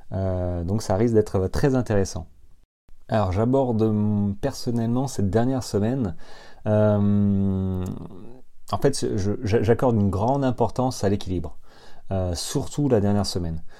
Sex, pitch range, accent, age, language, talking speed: male, 90-115 Hz, French, 30-49, French, 120 wpm